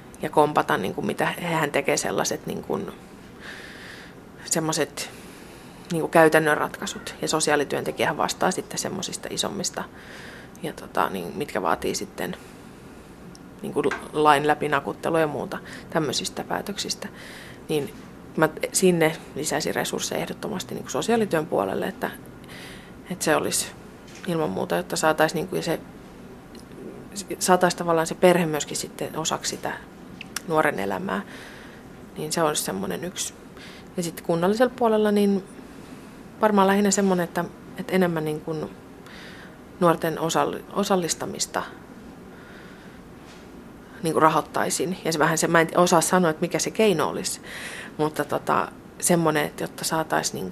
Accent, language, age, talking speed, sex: native, Finnish, 30-49, 120 wpm, female